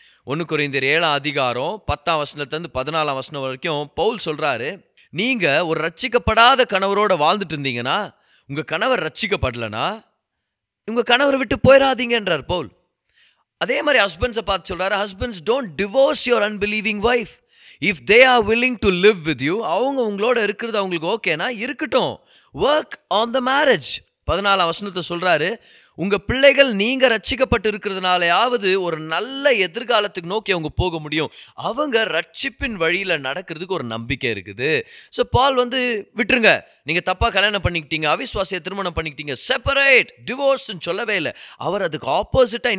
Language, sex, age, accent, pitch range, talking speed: Tamil, male, 20-39, native, 165-250 Hz, 105 wpm